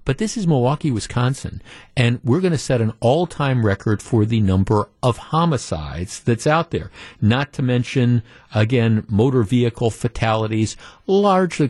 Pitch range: 105-140 Hz